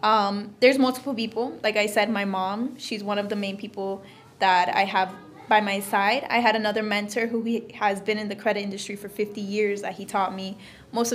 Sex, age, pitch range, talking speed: female, 20-39, 200-235 Hz, 215 wpm